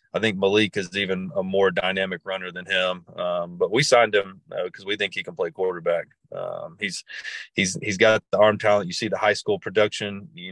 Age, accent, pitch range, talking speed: 30-49, American, 95-110 Hz, 225 wpm